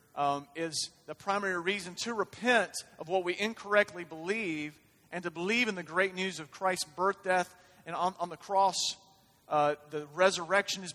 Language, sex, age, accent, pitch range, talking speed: English, male, 40-59, American, 175-230 Hz, 175 wpm